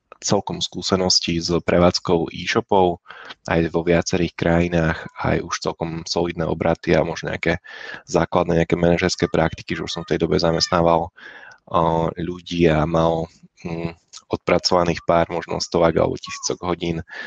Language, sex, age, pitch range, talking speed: Slovak, male, 20-39, 80-85 Hz, 130 wpm